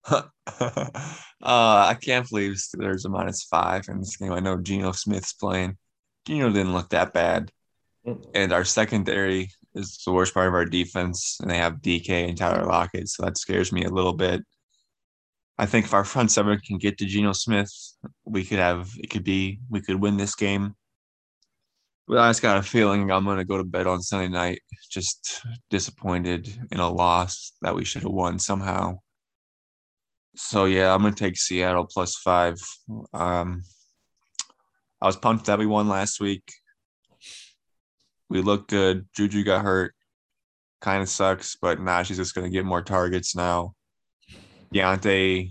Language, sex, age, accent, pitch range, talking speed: English, male, 20-39, American, 90-100 Hz, 175 wpm